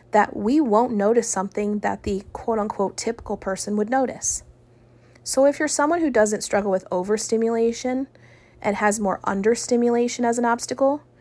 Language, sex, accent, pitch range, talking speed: English, female, American, 185-230 Hz, 155 wpm